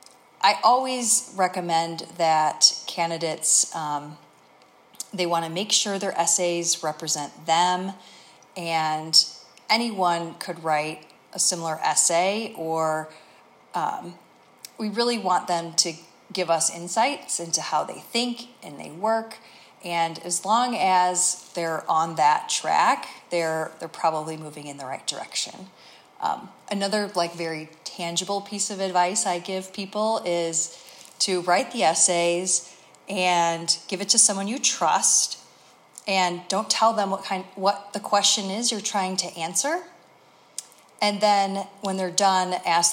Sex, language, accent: female, English, American